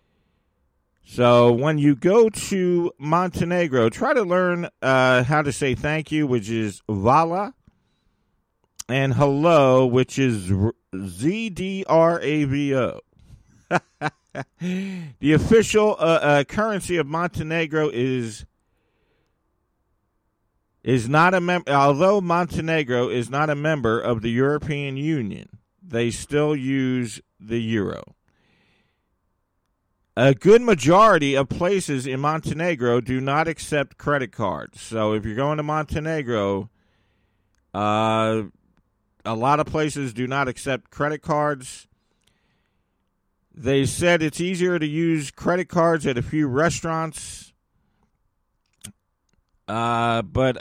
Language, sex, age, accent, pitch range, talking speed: English, male, 50-69, American, 120-160 Hz, 110 wpm